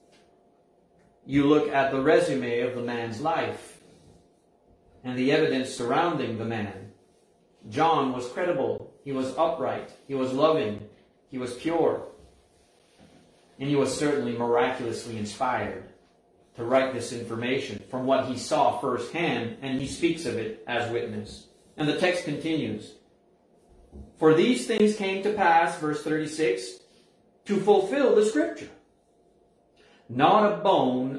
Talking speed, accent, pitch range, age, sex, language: 130 wpm, American, 130-185 Hz, 30-49, male, English